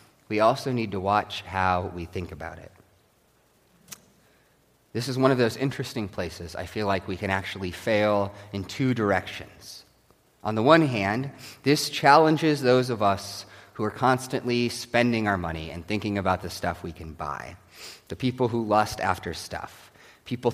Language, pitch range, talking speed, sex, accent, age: English, 95-125 Hz, 165 wpm, male, American, 30-49